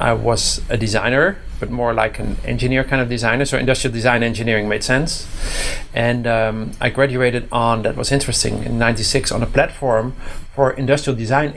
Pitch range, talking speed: 110-135 Hz, 175 wpm